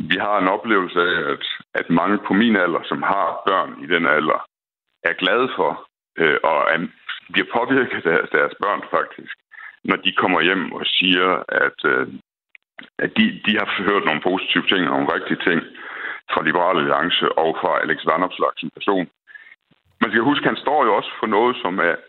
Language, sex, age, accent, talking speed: Danish, male, 60-79, native, 180 wpm